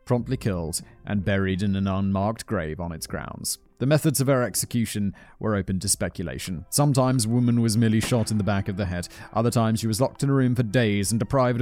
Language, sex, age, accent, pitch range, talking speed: English, male, 30-49, British, 95-125 Hz, 220 wpm